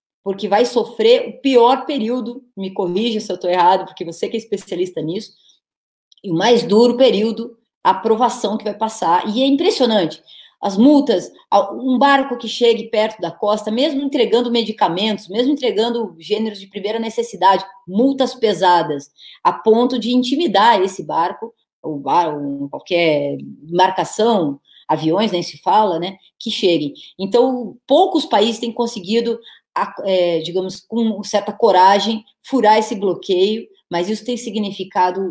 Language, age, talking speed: Portuguese, 20-39, 145 wpm